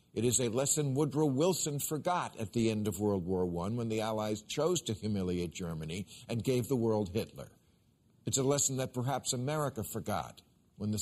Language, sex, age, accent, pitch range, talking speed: English, male, 50-69, American, 110-155 Hz, 190 wpm